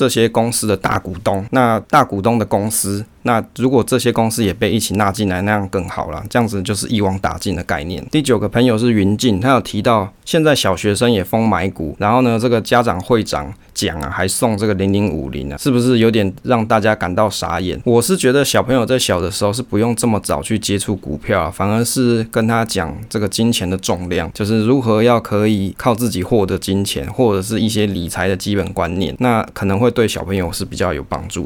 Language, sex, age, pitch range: Chinese, male, 20-39, 95-115 Hz